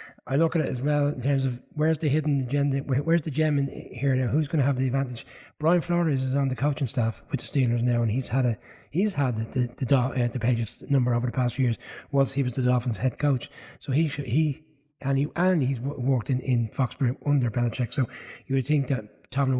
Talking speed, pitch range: 250 wpm, 120-140 Hz